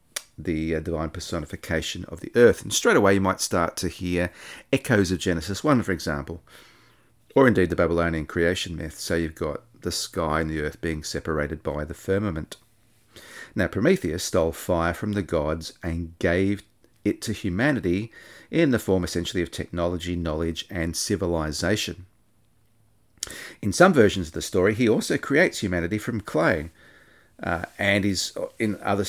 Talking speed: 160 wpm